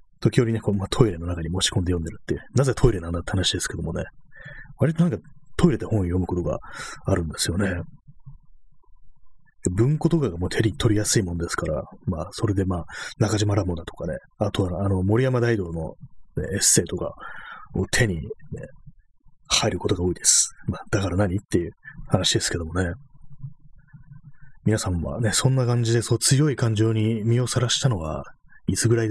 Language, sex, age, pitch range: Japanese, male, 30-49, 90-125 Hz